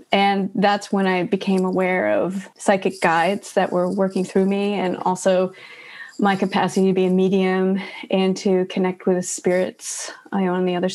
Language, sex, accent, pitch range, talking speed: English, female, American, 185-210 Hz, 180 wpm